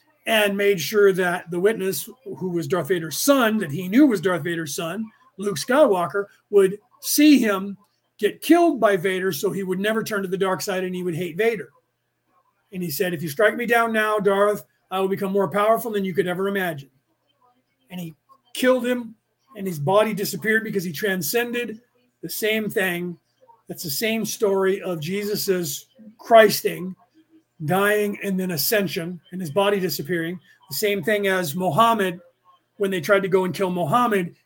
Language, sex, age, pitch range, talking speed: English, male, 40-59, 180-225 Hz, 180 wpm